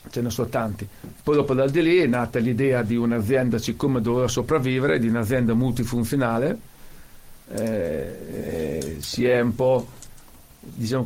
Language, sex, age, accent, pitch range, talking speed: Italian, male, 50-69, native, 115-135 Hz, 145 wpm